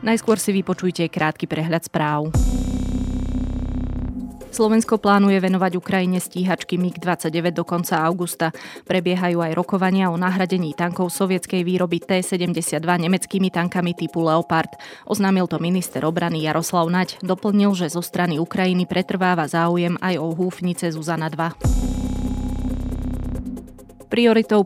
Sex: female